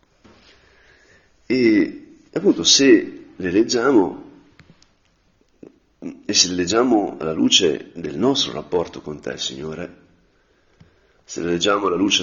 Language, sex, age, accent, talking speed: Italian, male, 40-59, native, 110 wpm